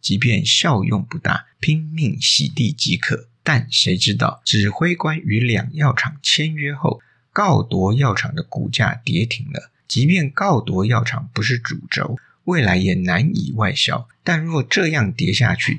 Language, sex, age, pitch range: Chinese, male, 50-69, 115-150 Hz